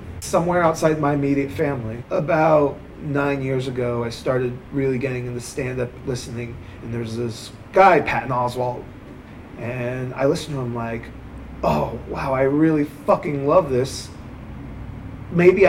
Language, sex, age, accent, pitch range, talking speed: English, male, 30-49, American, 125-160 Hz, 140 wpm